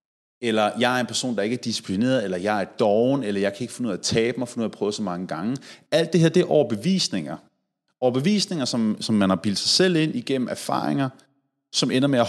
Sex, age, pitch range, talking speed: male, 30-49, 115-155 Hz, 250 wpm